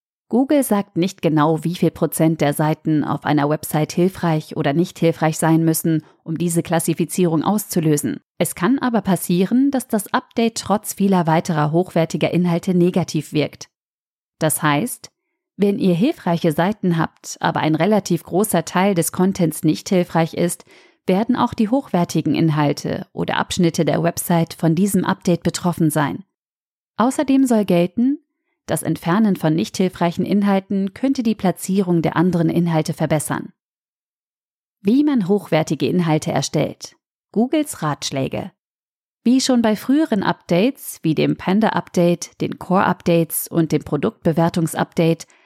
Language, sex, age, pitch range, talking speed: German, female, 40-59, 160-200 Hz, 135 wpm